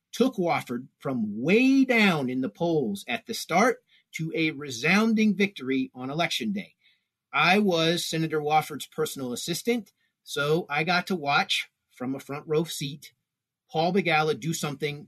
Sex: male